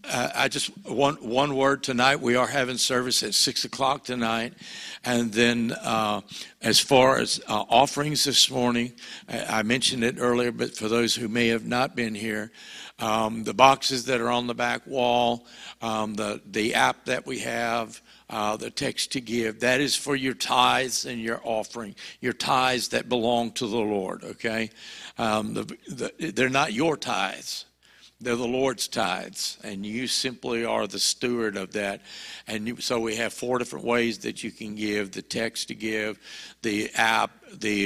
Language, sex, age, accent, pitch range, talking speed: English, male, 60-79, American, 110-125 Hz, 175 wpm